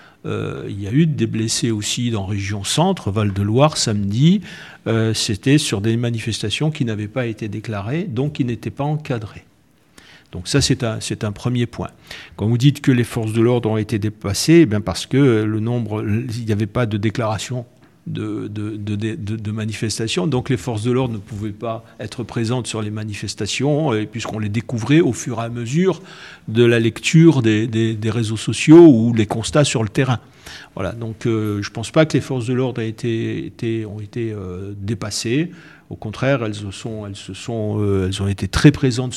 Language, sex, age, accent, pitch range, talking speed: French, male, 50-69, French, 105-130 Hz, 190 wpm